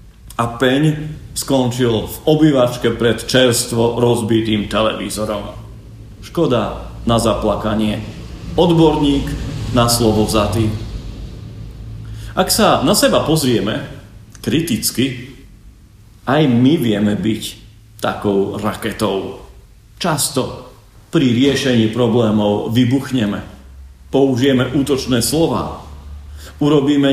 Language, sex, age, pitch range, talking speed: Slovak, male, 40-59, 100-140 Hz, 80 wpm